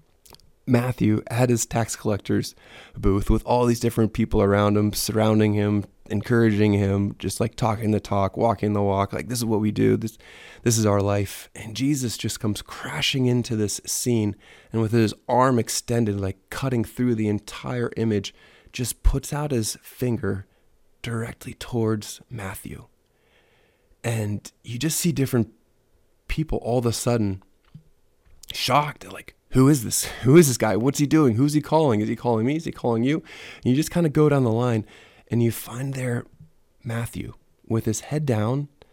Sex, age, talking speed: male, 20-39, 175 wpm